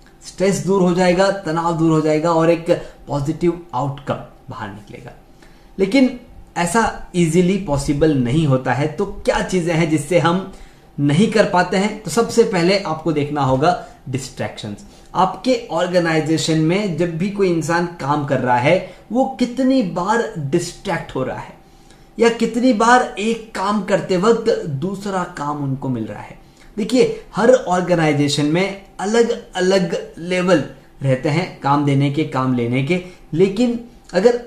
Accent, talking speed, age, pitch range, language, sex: native, 150 wpm, 20-39, 150-205 Hz, Hindi, male